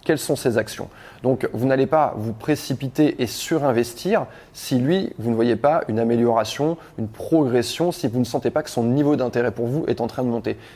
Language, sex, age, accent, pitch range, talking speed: French, male, 20-39, French, 120-150 Hz, 210 wpm